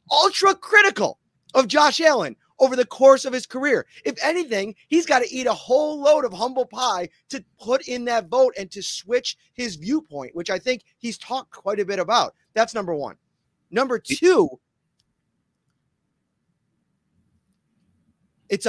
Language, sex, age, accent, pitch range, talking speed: English, male, 30-49, American, 180-245 Hz, 155 wpm